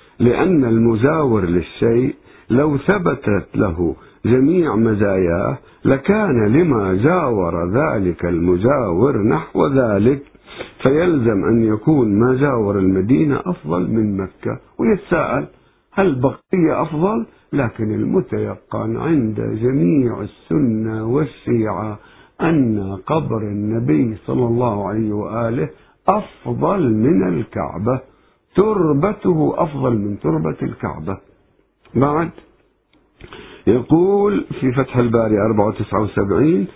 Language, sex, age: Arabic, male, 50-69